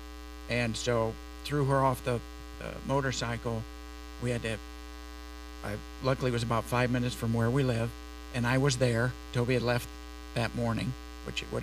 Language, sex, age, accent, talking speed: English, male, 60-79, American, 175 wpm